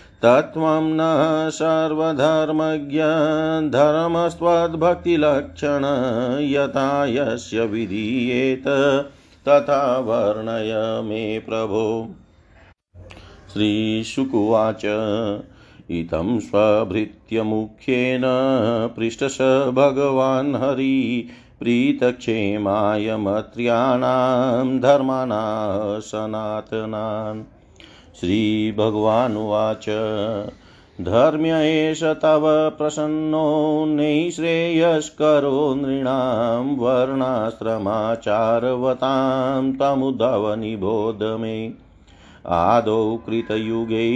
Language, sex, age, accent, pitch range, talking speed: Hindi, male, 50-69, native, 110-140 Hz, 40 wpm